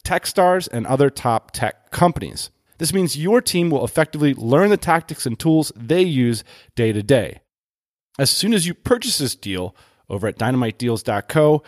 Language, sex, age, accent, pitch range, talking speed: English, male, 30-49, American, 110-160 Hz, 170 wpm